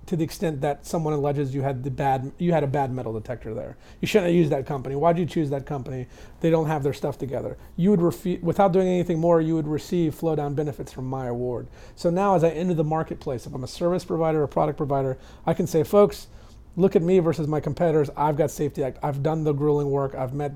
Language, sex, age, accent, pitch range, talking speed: English, male, 30-49, American, 135-170 Hz, 250 wpm